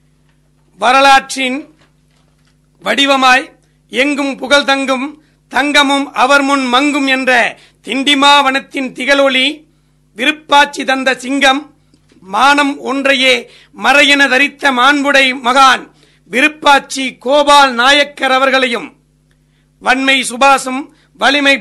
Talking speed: 80 wpm